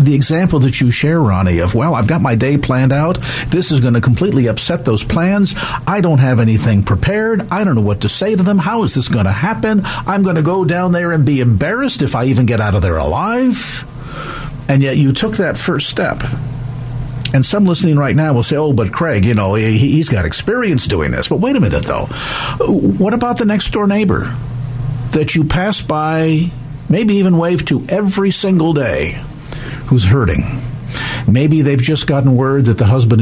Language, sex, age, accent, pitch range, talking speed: English, male, 50-69, American, 115-150 Hz, 205 wpm